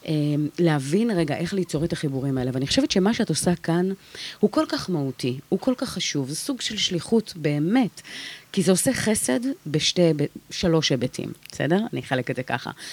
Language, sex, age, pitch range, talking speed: Hebrew, female, 30-49, 155-230 Hz, 180 wpm